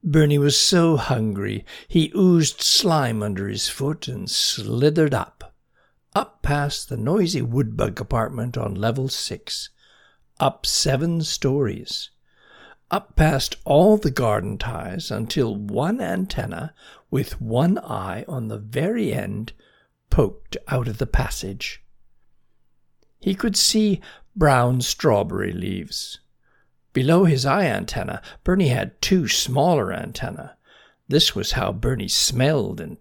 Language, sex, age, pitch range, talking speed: English, male, 60-79, 110-160 Hz, 120 wpm